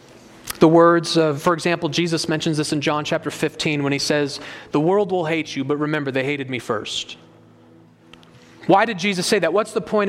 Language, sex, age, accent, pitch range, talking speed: English, male, 30-49, American, 150-205 Hz, 195 wpm